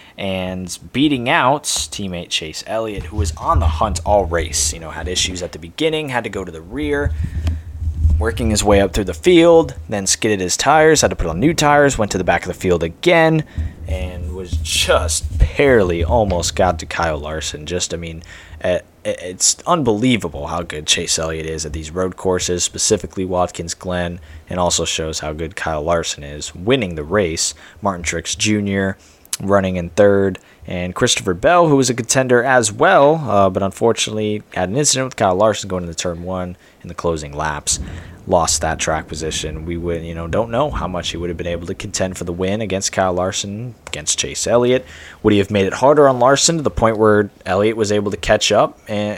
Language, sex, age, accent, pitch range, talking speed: English, male, 20-39, American, 85-110 Hz, 205 wpm